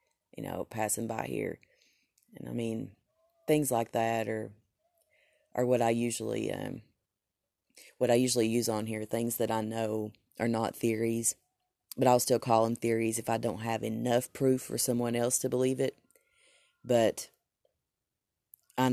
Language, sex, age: English, female, 30-49